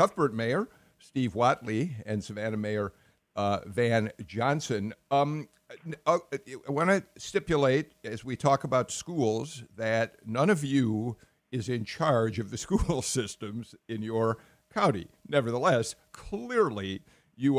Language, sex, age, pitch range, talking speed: English, male, 50-69, 110-150 Hz, 125 wpm